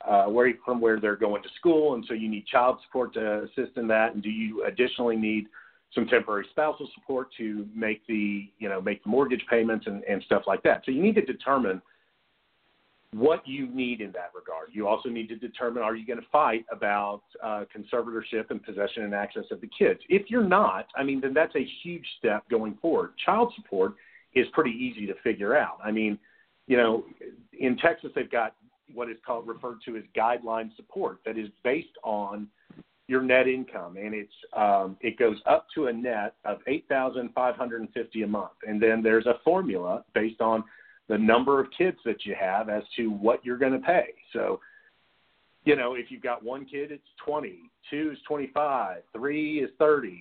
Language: English